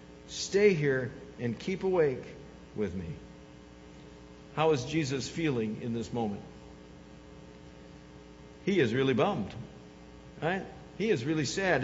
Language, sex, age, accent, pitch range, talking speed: English, male, 60-79, American, 105-150 Hz, 115 wpm